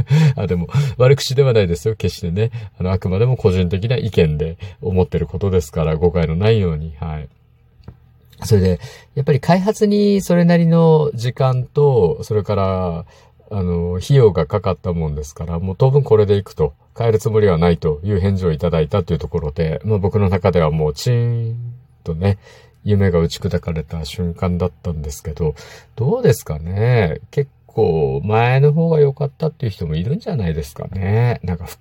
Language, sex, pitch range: Japanese, male, 85-125 Hz